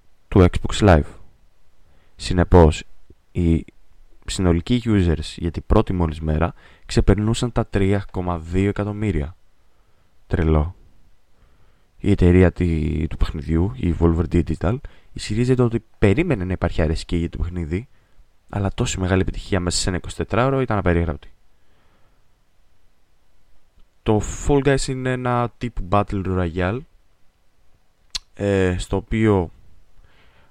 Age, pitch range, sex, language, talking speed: 20-39, 85-105 Hz, male, Greek, 105 wpm